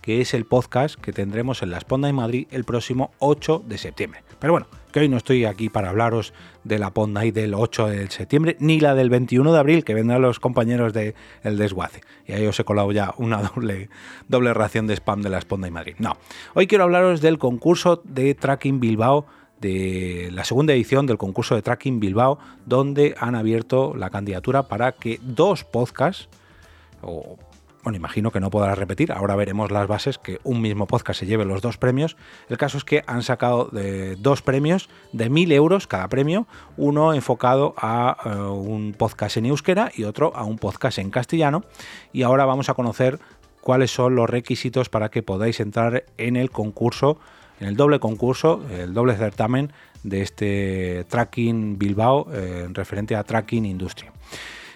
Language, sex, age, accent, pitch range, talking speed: Spanish, male, 30-49, Spanish, 105-135 Hz, 190 wpm